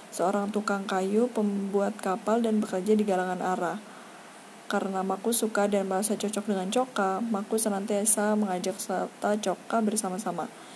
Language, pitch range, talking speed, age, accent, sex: Indonesian, 195-225 Hz, 135 wpm, 20-39, native, female